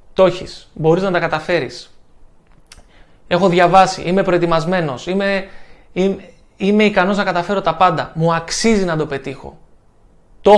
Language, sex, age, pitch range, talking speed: Greek, male, 20-39, 160-195 Hz, 130 wpm